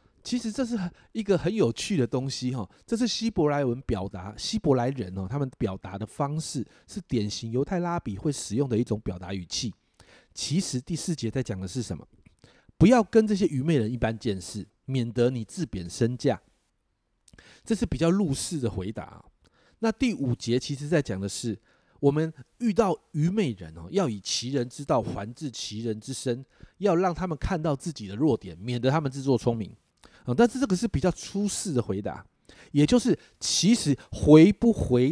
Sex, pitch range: male, 115-170 Hz